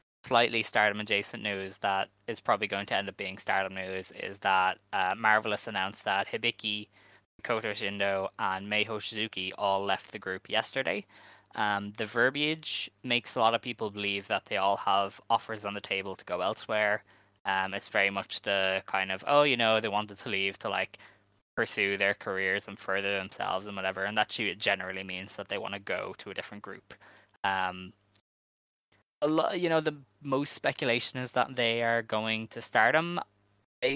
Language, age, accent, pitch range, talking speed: English, 10-29, Irish, 100-115 Hz, 180 wpm